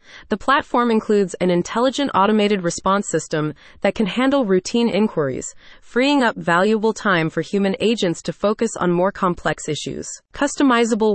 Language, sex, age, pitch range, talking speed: English, female, 30-49, 170-225 Hz, 145 wpm